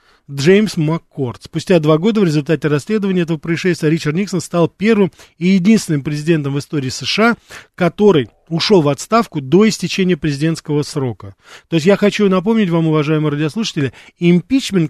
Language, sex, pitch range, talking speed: Russian, male, 140-180 Hz, 150 wpm